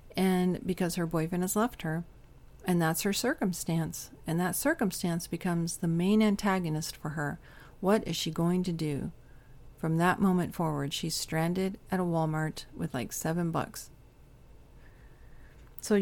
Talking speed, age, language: 150 wpm, 40-59, English